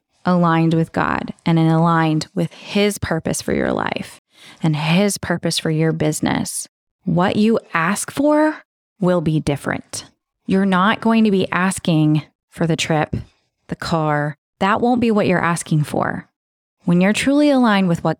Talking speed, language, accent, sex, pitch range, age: 160 wpm, English, American, female, 155-185 Hz, 20-39